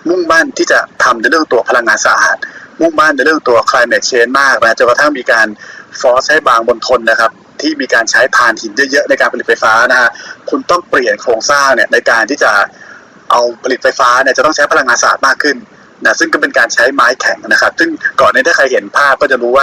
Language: Thai